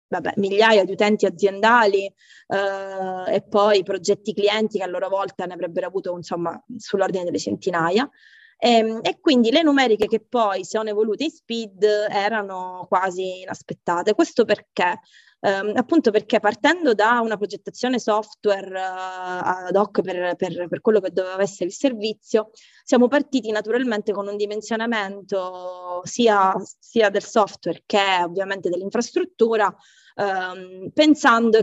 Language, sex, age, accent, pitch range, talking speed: Italian, female, 20-39, native, 190-225 Hz, 135 wpm